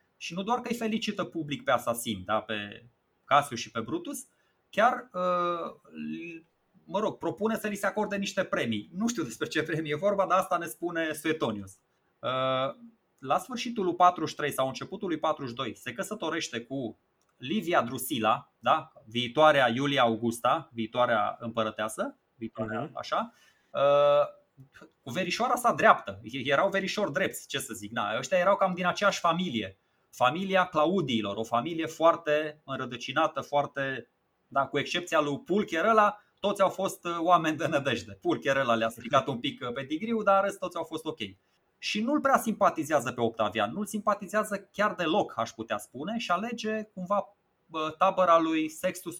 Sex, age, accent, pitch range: male, 20-39, native, 125-195 Hz